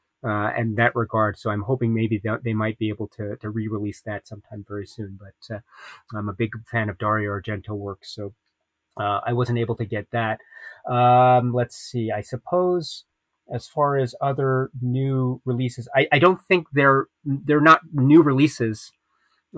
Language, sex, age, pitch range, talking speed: English, male, 30-49, 105-125 Hz, 185 wpm